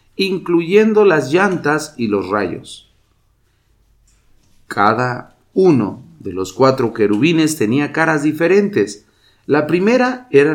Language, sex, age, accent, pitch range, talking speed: English, male, 50-69, Mexican, 105-170 Hz, 100 wpm